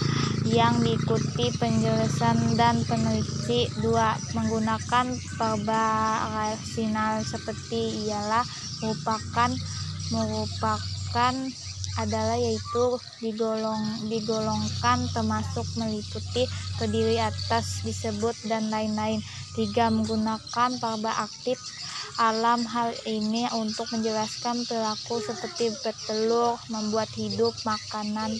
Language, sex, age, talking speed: Indonesian, female, 20-39, 80 wpm